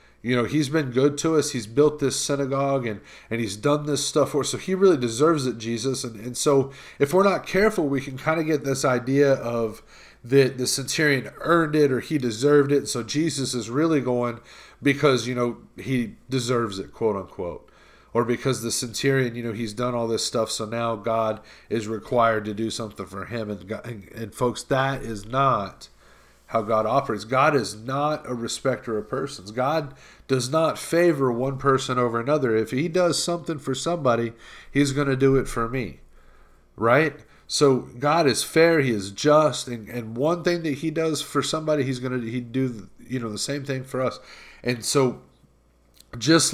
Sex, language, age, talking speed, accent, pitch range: male, English, 40-59, 200 wpm, American, 115-145 Hz